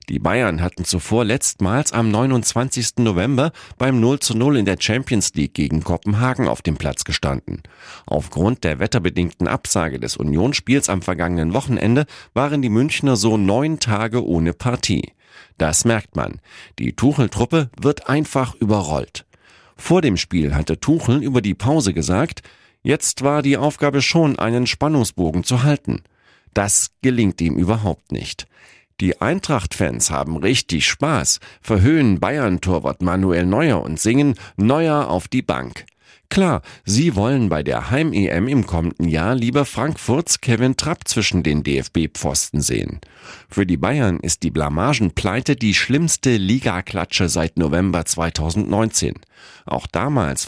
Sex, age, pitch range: male, 40-59, 90-135 Hz